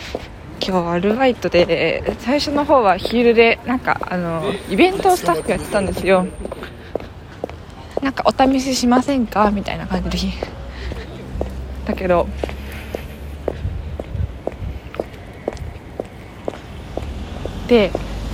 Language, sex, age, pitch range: Japanese, female, 20-39, 180-265 Hz